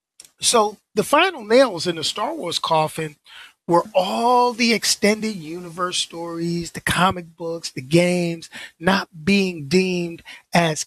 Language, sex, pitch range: English, male, 155-200 Hz